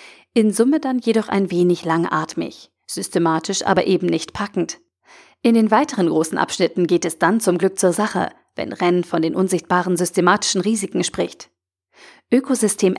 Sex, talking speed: female, 155 wpm